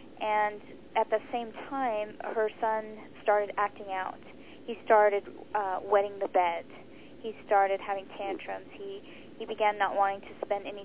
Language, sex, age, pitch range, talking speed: English, female, 10-29, 195-240 Hz, 155 wpm